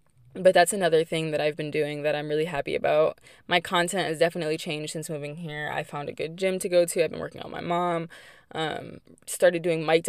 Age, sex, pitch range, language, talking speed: 20-39, female, 155-180 Hz, English, 230 wpm